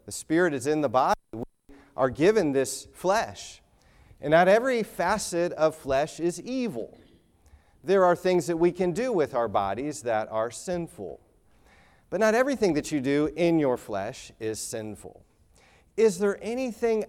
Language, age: English, 40-59